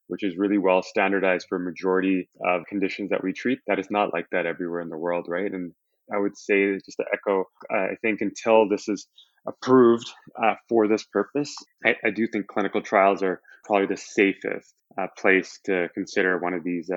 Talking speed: 205 wpm